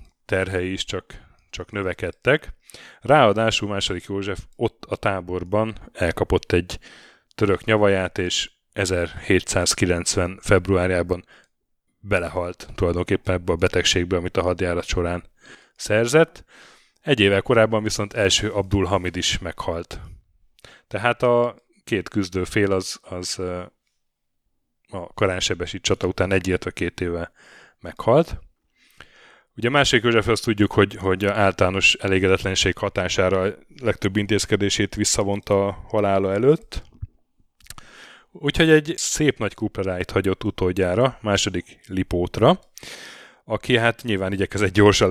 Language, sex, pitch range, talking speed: Hungarian, male, 90-105 Hz, 110 wpm